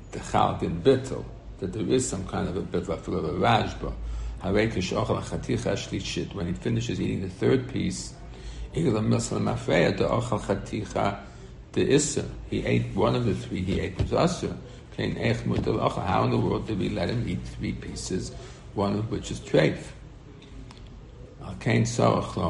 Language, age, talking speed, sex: English, 60-79, 110 wpm, male